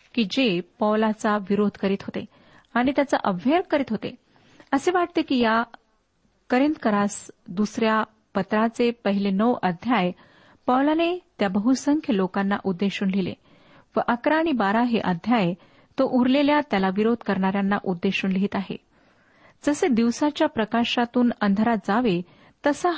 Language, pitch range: Marathi, 200-260 Hz